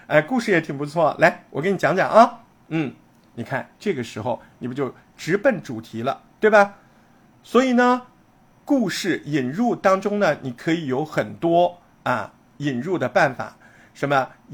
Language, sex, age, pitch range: Chinese, male, 50-69, 140-200 Hz